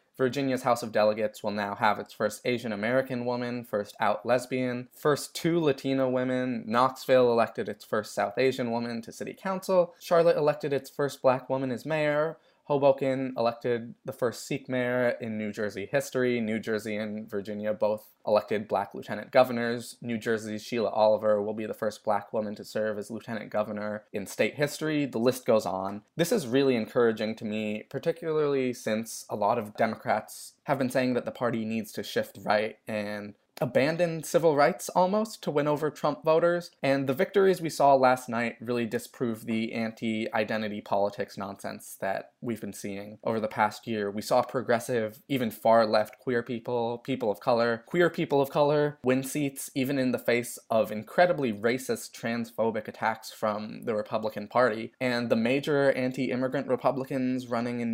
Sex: male